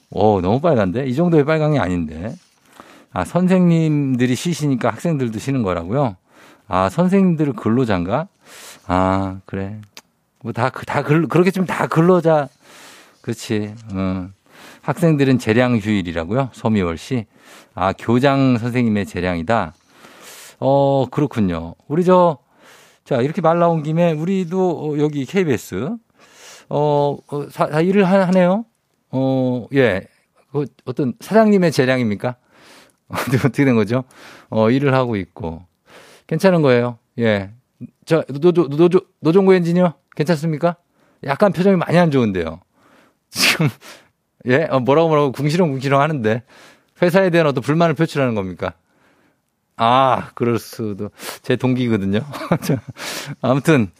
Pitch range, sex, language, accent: 110-160 Hz, male, Korean, native